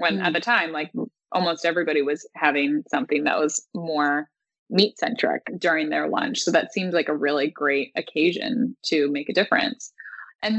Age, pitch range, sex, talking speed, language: 20-39, 160-245 Hz, female, 175 wpm, English